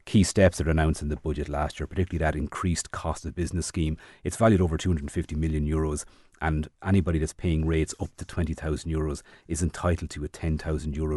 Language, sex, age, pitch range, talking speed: English, male, 30-49, 80-95 Hz, 190 wpm